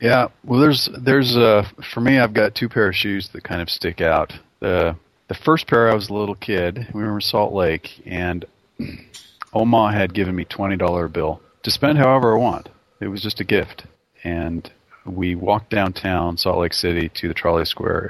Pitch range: 85-110 Hz